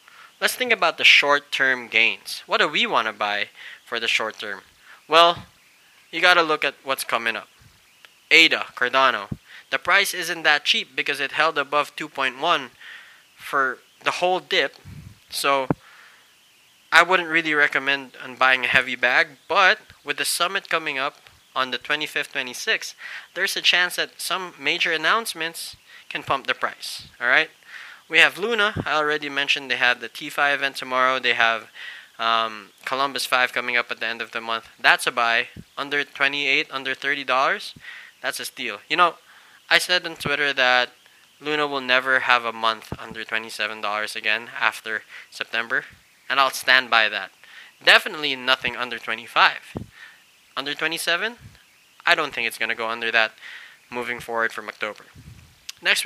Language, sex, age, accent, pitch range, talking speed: English, male, 20-39, Filipino, 120-155 Hz, 160 wpm